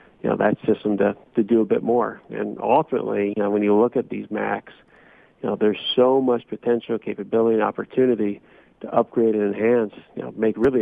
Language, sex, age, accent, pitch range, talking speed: English, male, 40-59, American, 105-120 Hz, 205 wpm